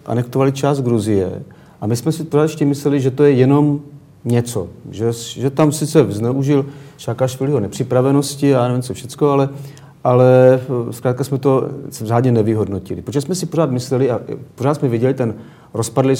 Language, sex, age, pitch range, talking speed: Slovak, male, 40-59, 105-140 Hz, 170 wpm